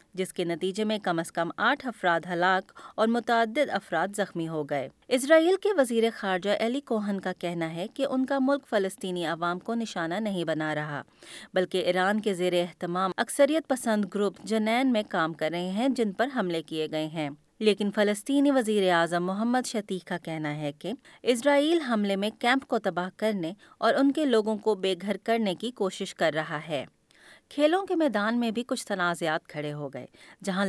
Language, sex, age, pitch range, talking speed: Urdu, female, 20-39, 175-235 Hz, 190 wpm